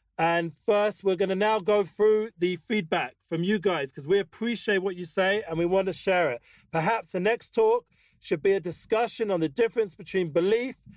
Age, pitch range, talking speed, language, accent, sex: 40-59, 175-210 Hz, 210 wpm, English, British, male